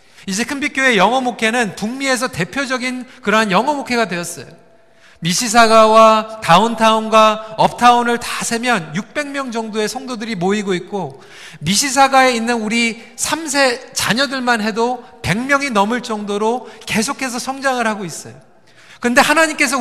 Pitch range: 215-265 Hz